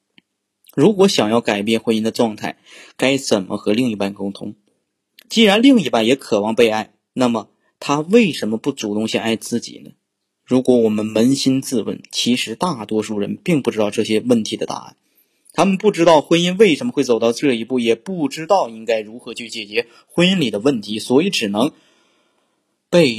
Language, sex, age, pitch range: Chinese, male, 20-39, 105-130 Hz